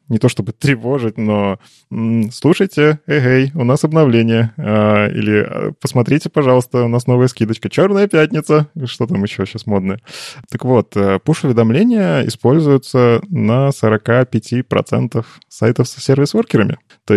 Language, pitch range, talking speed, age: Russian, 105-135 Hz, 120 wpm, 20-39